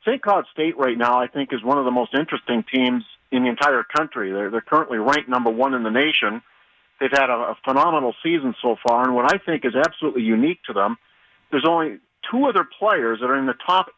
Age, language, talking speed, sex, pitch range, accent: 50-69, English, 230 wpm, male, 125-160 Hz, American